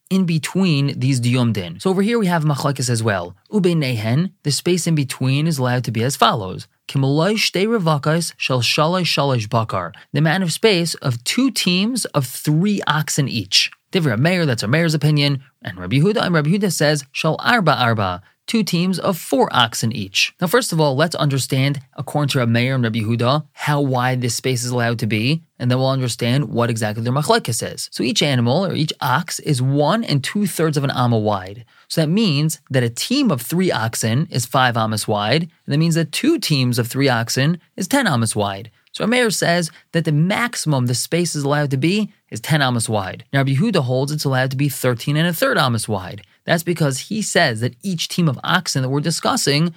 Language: English